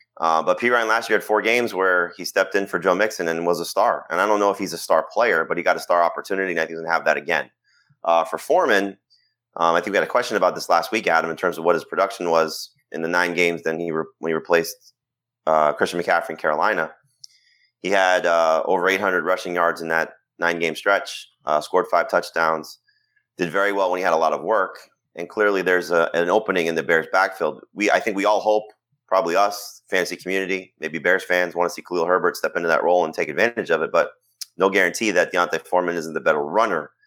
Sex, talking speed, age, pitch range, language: male, 250 wpm, 30-49, 80-105 Hz, English